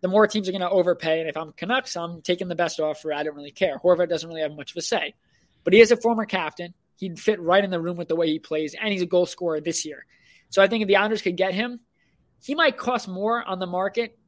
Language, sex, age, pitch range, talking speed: English, male, 20-39, 170-215 Hz, 285 wpm